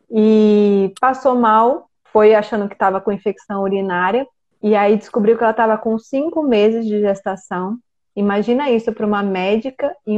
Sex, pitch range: female, 200-235 Hz